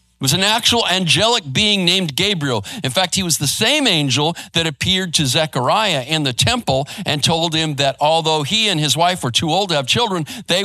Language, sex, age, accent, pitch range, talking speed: English, male, 50-69, American, 130-185 Hz, 215 wpm